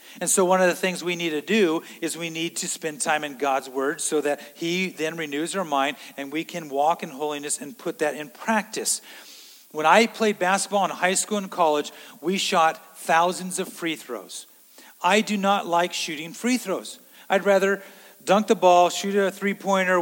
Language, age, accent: English, 40-59, American